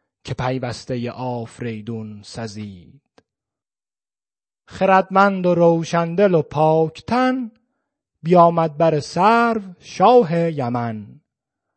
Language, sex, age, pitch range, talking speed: Persian, male, 30-49, 135-190 Hz, 70 wpm